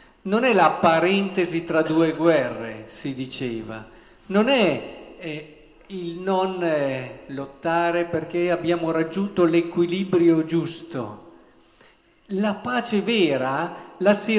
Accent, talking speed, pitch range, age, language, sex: native, 110 wpm, 165-215 Hz, 50-69, Italian, male